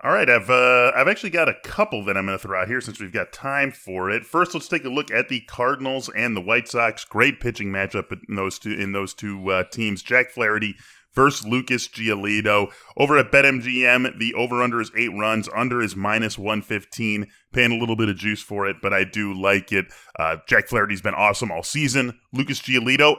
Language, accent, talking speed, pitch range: English, American, 220 wpm, 105-130 Hz